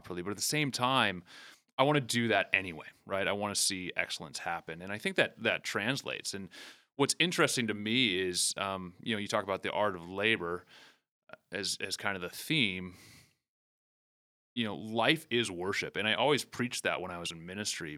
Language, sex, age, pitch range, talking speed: English, male, 30-49, 90-120 Hz, 205 wpm